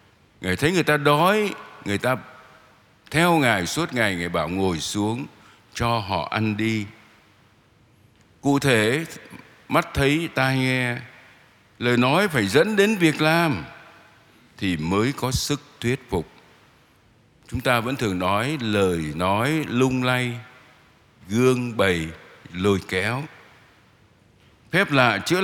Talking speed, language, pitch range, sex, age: 130 wpm, Vietnamese, 100-135 Hz, male, 60-79